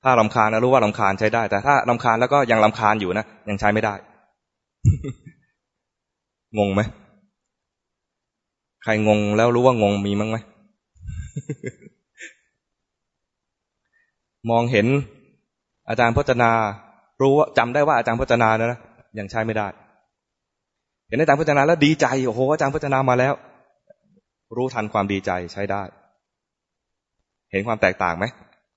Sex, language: male, English